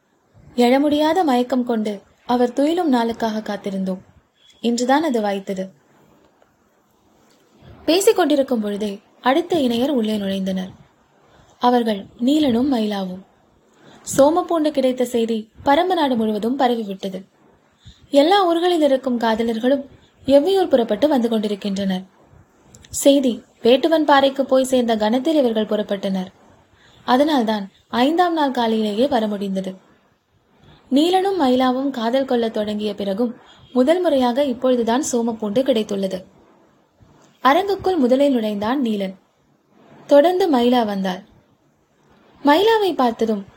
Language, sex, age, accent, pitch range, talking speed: Tamil, female, 20-39, native, 215-280 Hz, 65 wpm